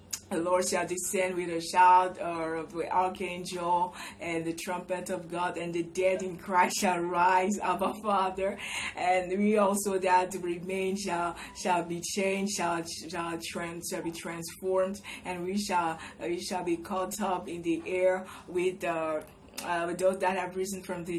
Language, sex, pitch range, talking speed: English, female, 175-195 Hz, 175 wpm